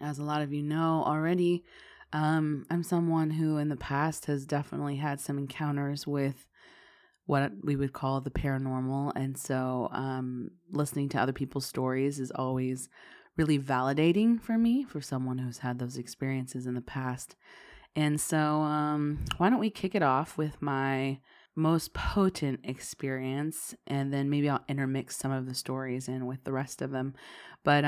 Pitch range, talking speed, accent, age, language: 130-155 Hz, 170 wpm, American, 20-39, English